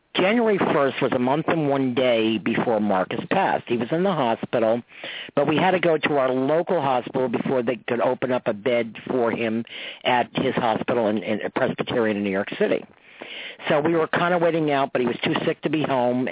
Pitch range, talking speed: 120-150 Hz, 215 wpm